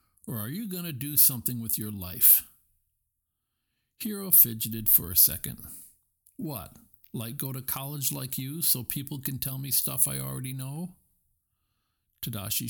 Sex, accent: male, American